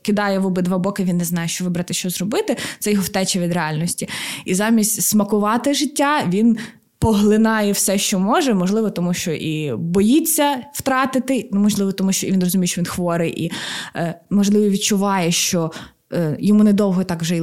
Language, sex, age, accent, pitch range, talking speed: Ukrainian, female, 20-39, native, 180-215 Hz, 165 wpm